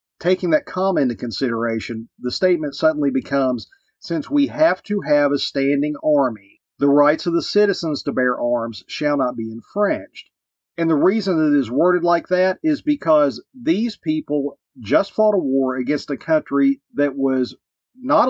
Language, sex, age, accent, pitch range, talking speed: English, male, 40-59, American, 125-180 Hz, 165 wpm